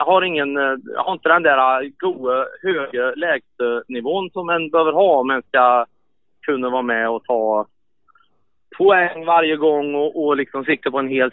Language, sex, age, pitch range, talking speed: Swedish, male, 30-49, 125-160 Hz, 165 wpm